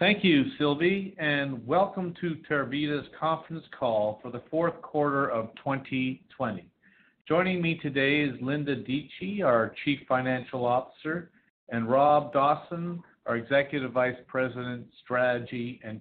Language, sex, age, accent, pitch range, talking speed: English, male, 50-69, American, 125-160 Hz, 125 wpm